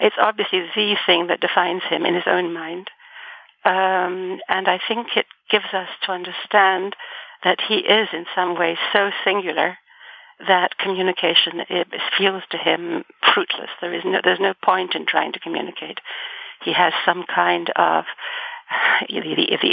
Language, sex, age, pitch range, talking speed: English, female, 60-79, 190-235 Hz, 165 wpm